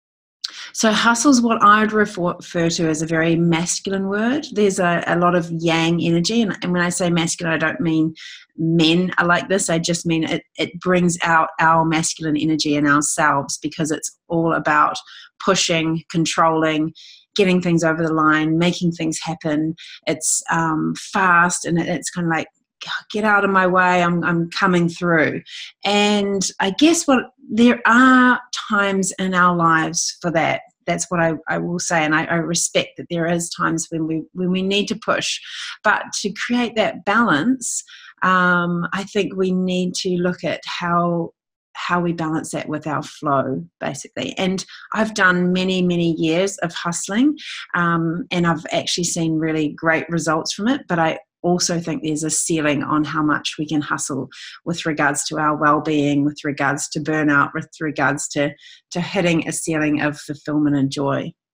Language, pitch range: English, 155-185 Hz